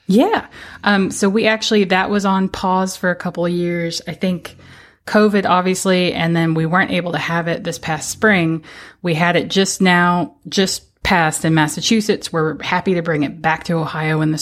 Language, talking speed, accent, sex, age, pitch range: English, 200 wpm, American, female, 20-39, 155-180 Hz